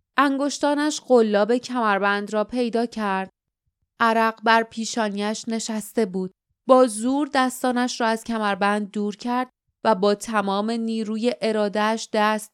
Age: 20-39